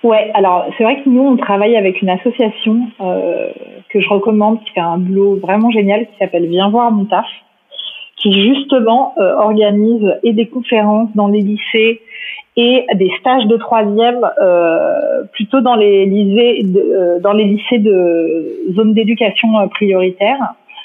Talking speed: 160 wpm